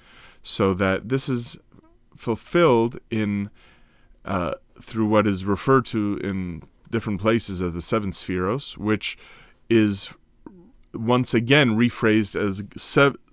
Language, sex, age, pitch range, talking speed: English, male, 30-49, 105-125 Hz, 115 wpm